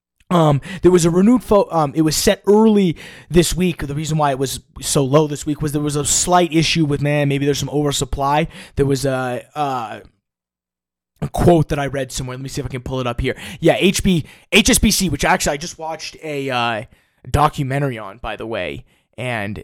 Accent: American